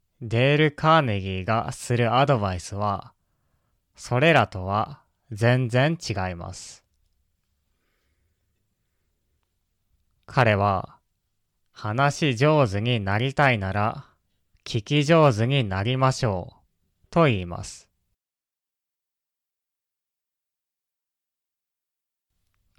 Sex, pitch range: male, 95-130 Hz